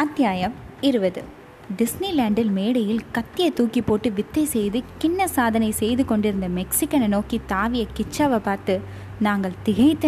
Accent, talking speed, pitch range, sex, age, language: native, 120 wpm, 220-295 Hz, female, 20-39, Tamil